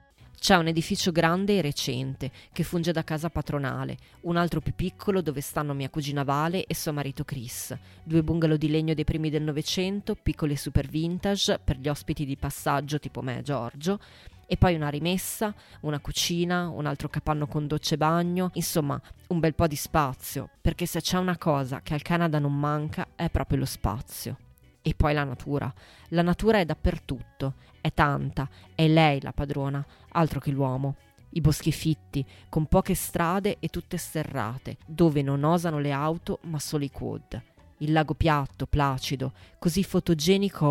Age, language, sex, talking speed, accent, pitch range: 20-39, Italian, female, 175 wpm, native, 140-170 Hz